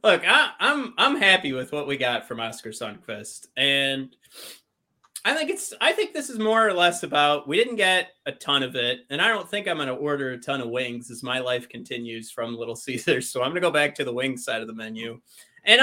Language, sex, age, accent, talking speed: English, male, 30-49, American, 235 wpm